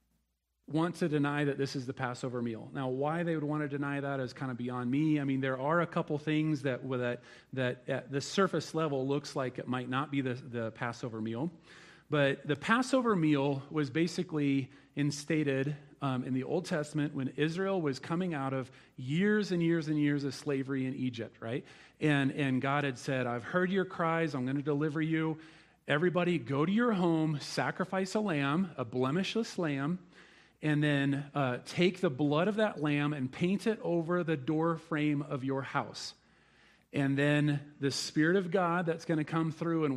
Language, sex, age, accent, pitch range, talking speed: English, male, 40-59, American, 135-170 Hz, 195 wpm